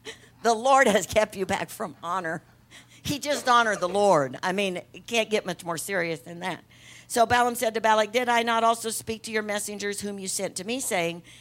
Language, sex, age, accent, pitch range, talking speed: English, female, 60-79, American, 145-215 Hz, 220 wpm